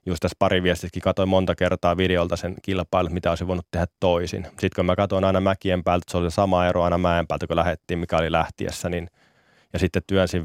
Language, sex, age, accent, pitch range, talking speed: Finnish, male, 20-39, native, 85-95 Hz, 220 wpm